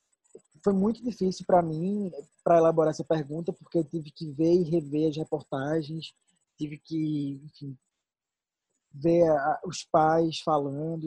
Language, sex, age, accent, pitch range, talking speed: Portuguese, male, 20-39, Brazilian, 150-185 Hz, 140 wpm